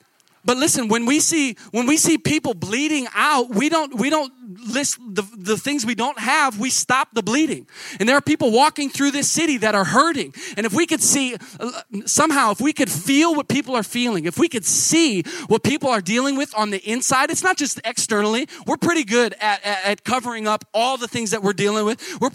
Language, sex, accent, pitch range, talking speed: English, male, American, 205-265 Hz, 225 wpm